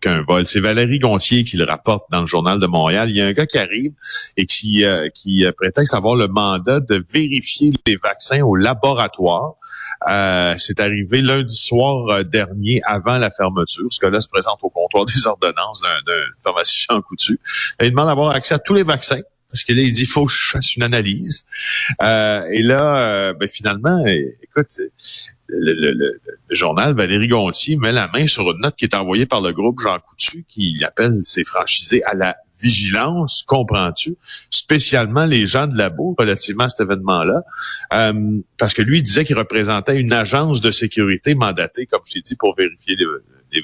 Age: 40-59